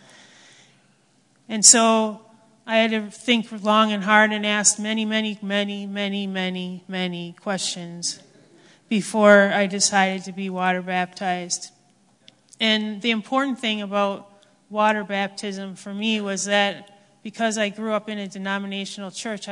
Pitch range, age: 190-210 Hz, 30-49